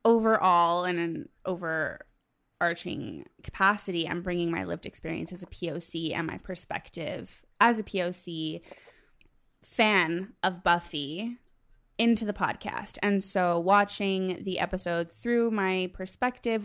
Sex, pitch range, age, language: female, 170-200 Hz, 20-39, English